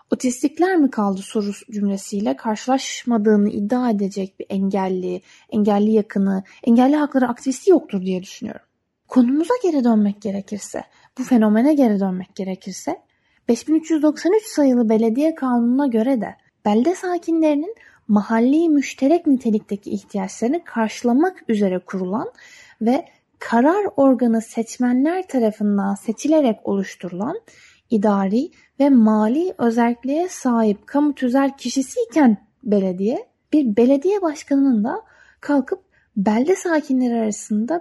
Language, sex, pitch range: Turkish, female, 210-310 Hz